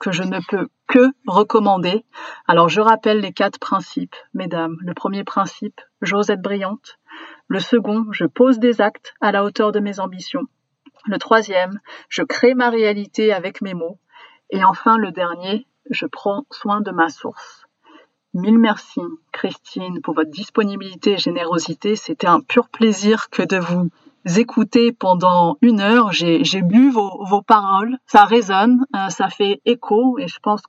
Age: 30-49